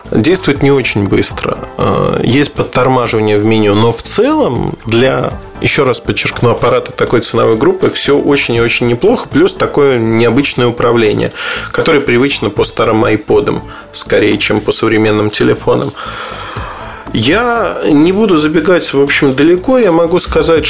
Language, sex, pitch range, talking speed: Russian, male, 115-155 Hz, 140 wpm